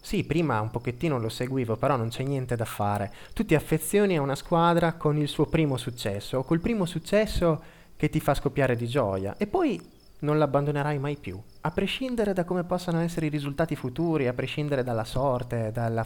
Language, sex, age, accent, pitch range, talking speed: Italian, male, 20-39, native, 105-150 Hz, 200 wpm